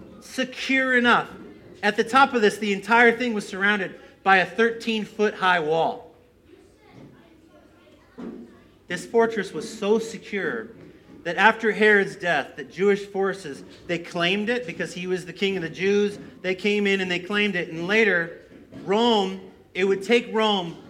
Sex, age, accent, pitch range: male, 40-59, American, 170-225 Hz